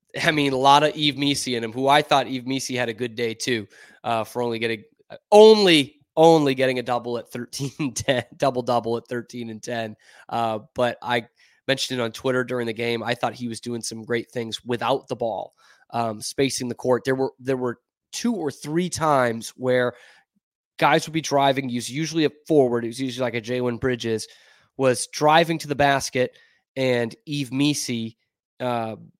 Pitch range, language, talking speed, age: 120-140 Hz, English, 195 wpm, 20-39